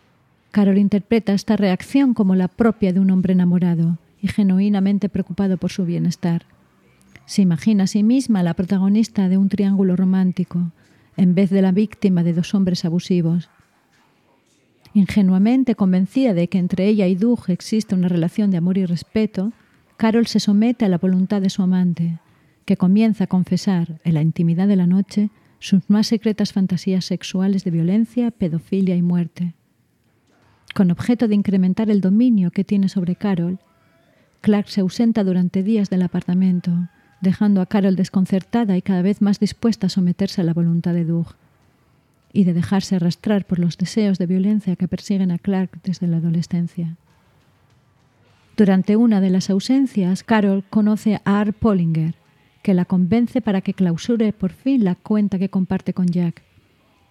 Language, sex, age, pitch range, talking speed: Spanish, female, 40-59, 175-205 Hz, 160 wpm